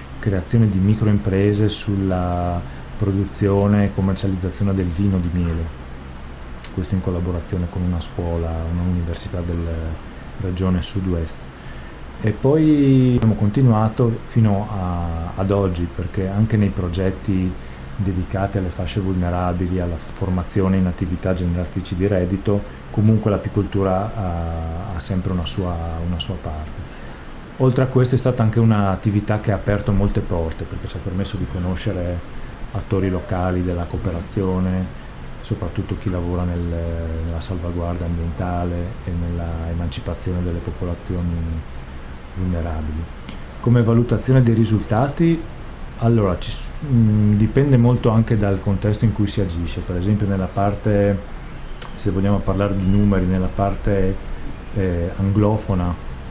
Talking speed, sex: 125 wpm, male